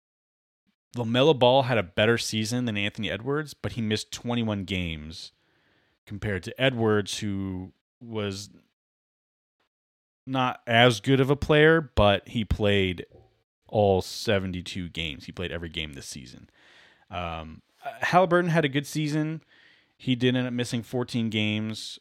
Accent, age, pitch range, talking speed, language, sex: American, 30-49, 95-120 Hz, 135 wpm, English, male